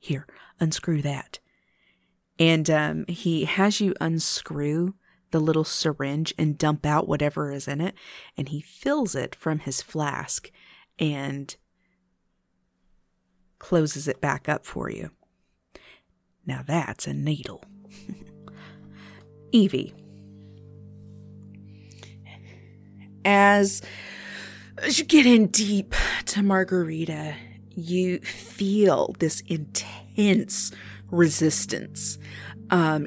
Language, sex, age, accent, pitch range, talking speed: English, female, 40-59, American, 110-175 Hz, 95 wpm